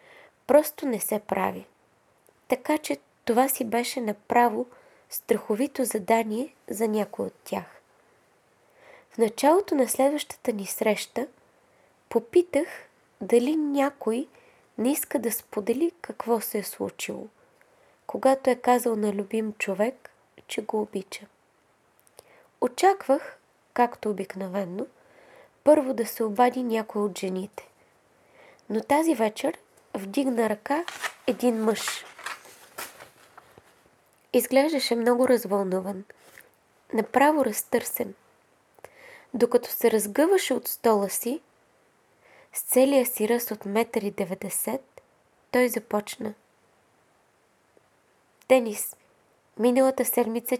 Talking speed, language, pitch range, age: 95 wpm, Bulgarian, 215-275 Hz, 20-39